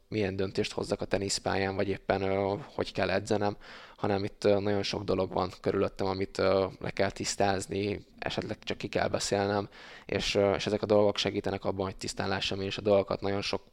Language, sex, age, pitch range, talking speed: Hungarian, male, 20-39, 95-105 Hz, 180 wpm